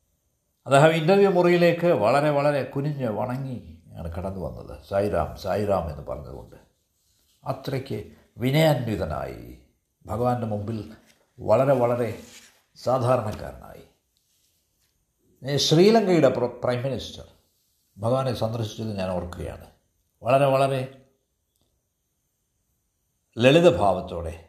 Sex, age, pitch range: male, 60-79, 85-130 Hz